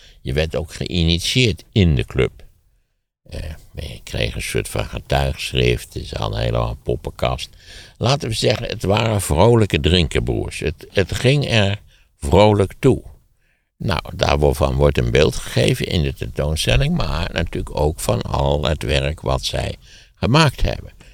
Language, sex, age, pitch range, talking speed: Dutch, male, 60-79, 70-100 Hz, 150 wpm